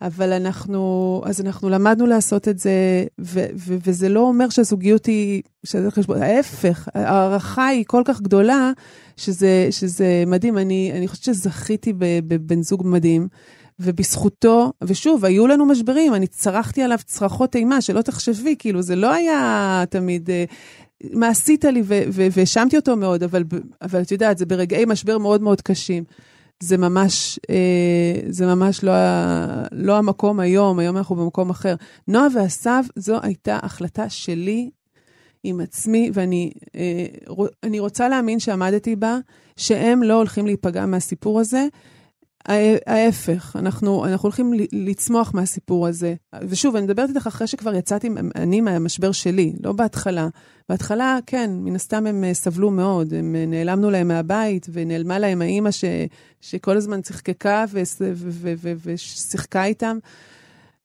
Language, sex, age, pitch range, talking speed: Hebrew, female, 30-49, 180-220 Hz, 135 wpm